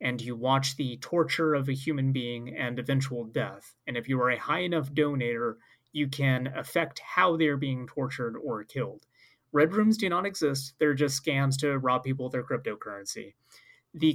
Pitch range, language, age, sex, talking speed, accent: 130-160 Hz, English, 30-49, male, 185 wpm, American